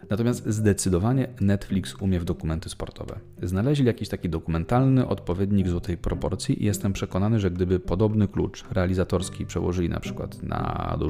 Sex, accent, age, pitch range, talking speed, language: male, native, 30-49, 90-105 Hz, 145 wpm, Polish